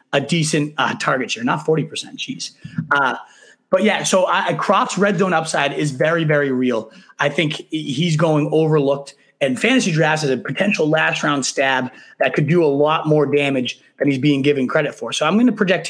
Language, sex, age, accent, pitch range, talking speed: English, male, 30-49, American, 140-175 Hz, 195 wpm